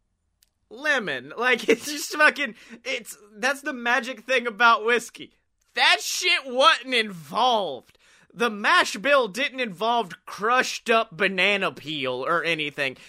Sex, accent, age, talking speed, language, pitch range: male, American, 30-49, 125 wpm, English, 160-235 Hz